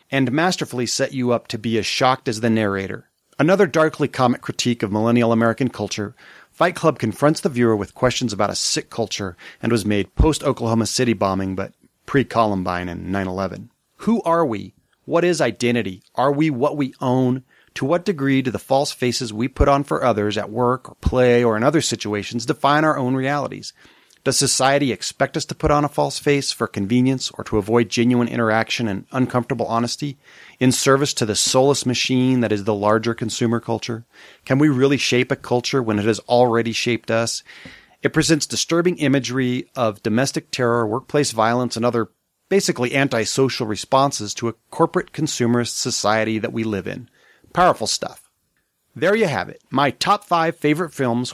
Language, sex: English, male